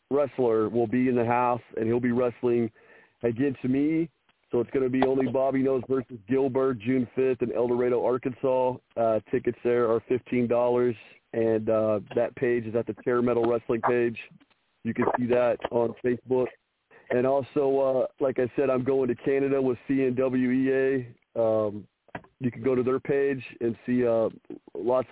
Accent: American